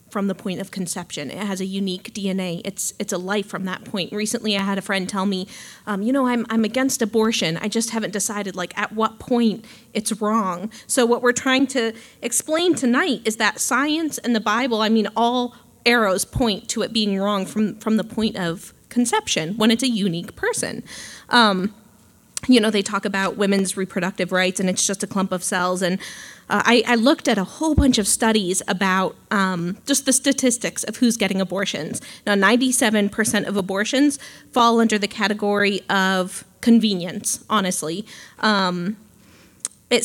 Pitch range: 195-235 Hz